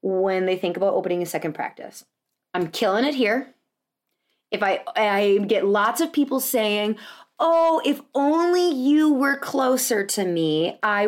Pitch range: 195-275 Hz